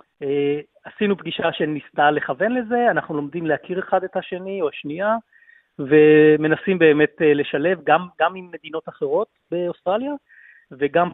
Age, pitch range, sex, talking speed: 30-49, 150-200 Hz, male, 135 wpm